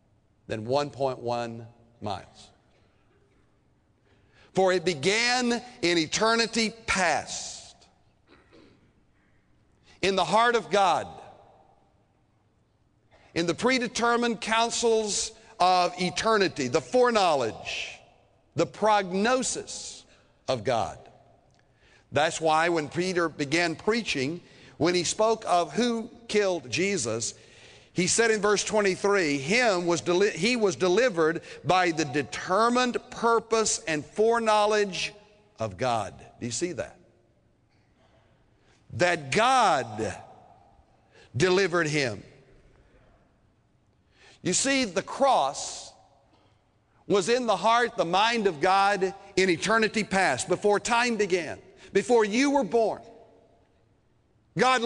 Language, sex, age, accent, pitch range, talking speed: English, male, 50-69, American, 150-225 Hz, 95 wpm